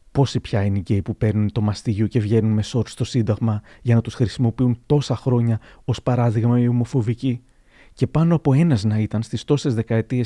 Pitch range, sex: 110-140 Hz, male